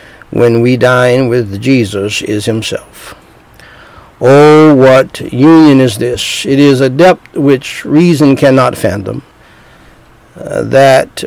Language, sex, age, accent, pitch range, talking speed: English, male, 60-79, American, 125-155 Hz, 115 wpm